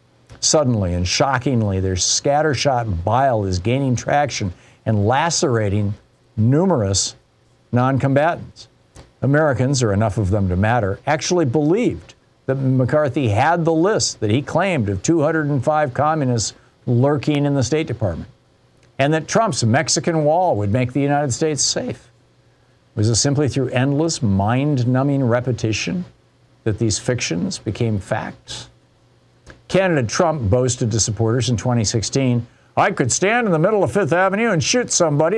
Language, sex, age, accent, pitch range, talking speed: English, male, 50-69, American, 115-160 Hz, 135 wpm